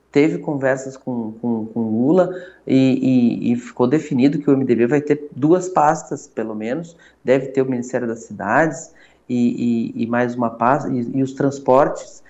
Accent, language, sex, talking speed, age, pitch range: Brazilian, Portuguese, male, 175 wpm, 20-39, 130-160 Hz